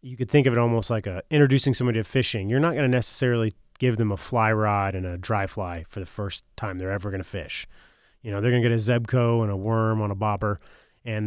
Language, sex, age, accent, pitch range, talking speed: English, male, 30-49, American, 110-130 Hz, 265 wpm